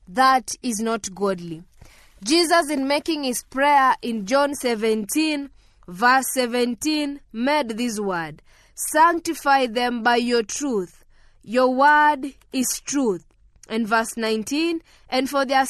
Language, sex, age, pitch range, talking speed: English, female, 20-39, 230-295 Hz, 120 wpm